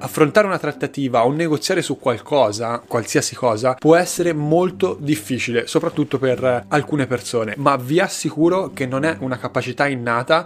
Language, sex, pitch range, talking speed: Italian, male, 125-160 Hz, 150 wpm